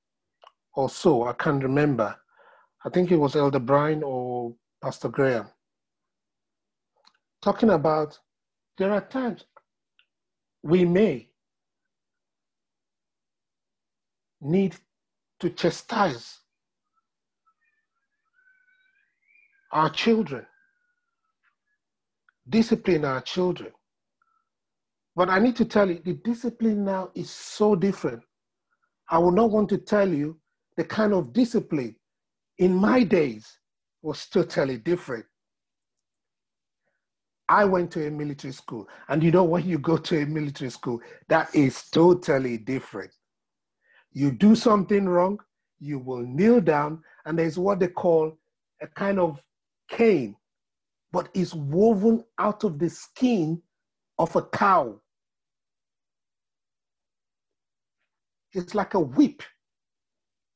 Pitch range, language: 155-225 Hz, English